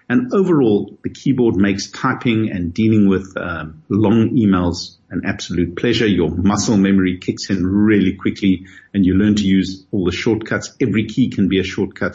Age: 50-69